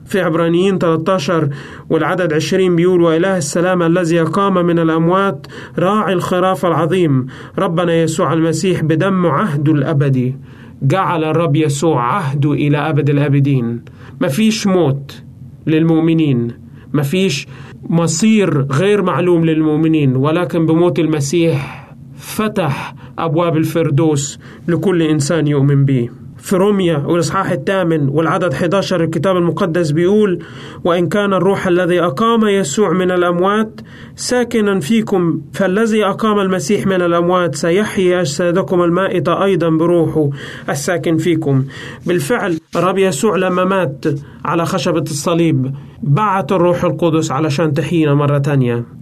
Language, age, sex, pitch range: Arabic, 30-49, male, 145-185 Hz